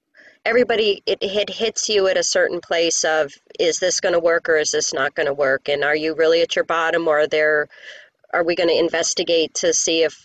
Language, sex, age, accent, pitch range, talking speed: English, female, 40-59, American, 160-205 Hz, 230 wpm